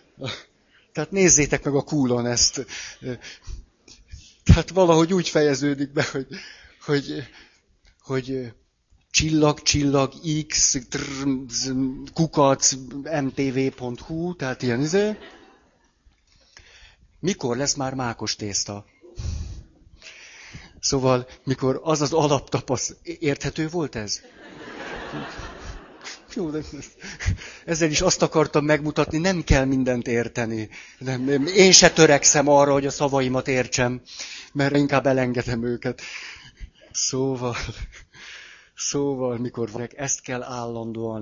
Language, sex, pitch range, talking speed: Hungarian, male, 115-145 Hz, 95 wpm